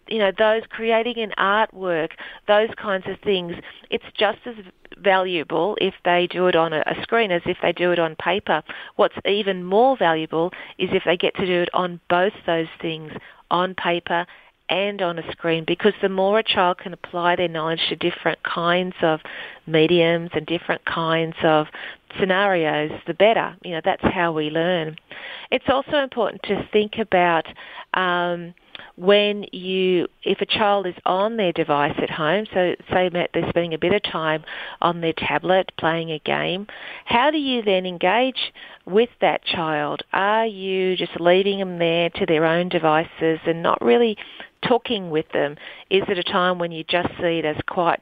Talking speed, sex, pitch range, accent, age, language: 180 wpm, female, 165-200 Hz, Australian, 40-59, English